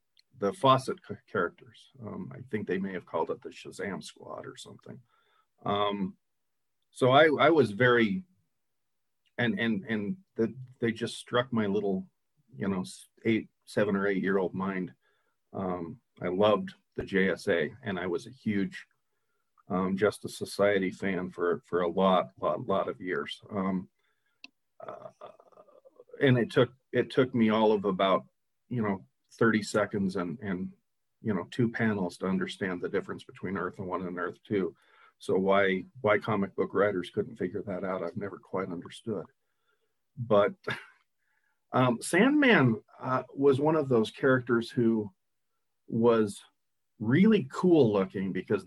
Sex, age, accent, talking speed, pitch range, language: male, 40-59, American, 150 wpm, 95-120 Hz, English